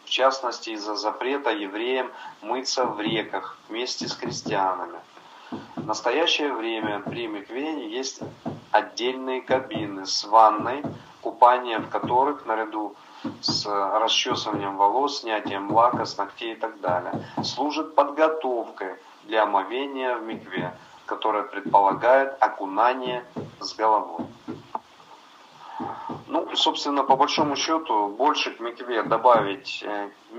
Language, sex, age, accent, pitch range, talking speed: Russian, male, 30-49, native, 100-130 Hz, 105 wpm